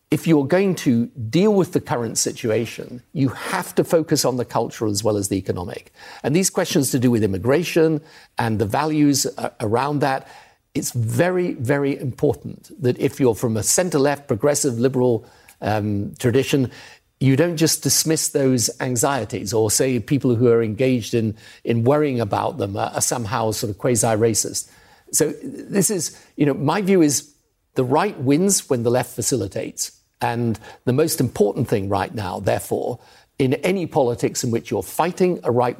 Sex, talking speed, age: male, 170 wpm, 50-69